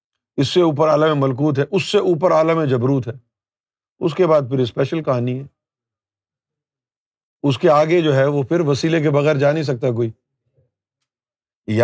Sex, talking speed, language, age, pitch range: male, 170 wpm, Urdu, 50-69, 125-175 Hz